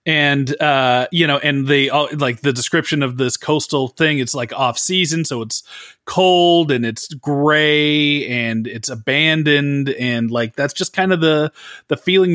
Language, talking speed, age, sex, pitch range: English, 170 wpm, 30-49, male, 120-150 Hz